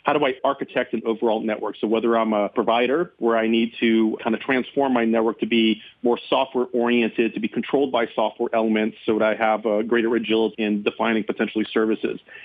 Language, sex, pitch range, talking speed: English, male, 110-125 Hz, 205 wpm